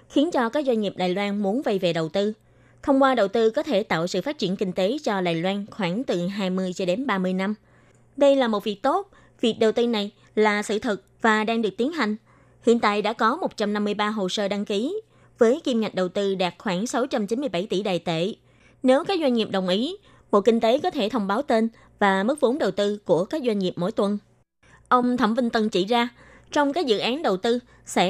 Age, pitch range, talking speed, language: 20-39, 190-245 Hz, 235 wpm, Vietnamese